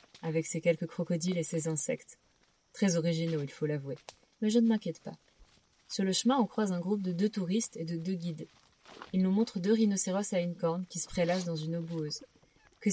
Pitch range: 160-185 Hz